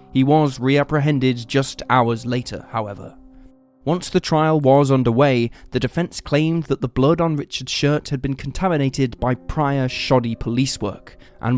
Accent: British